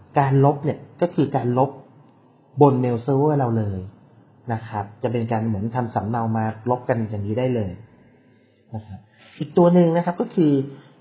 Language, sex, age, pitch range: Thai, male, 30-49, 115-145 Hz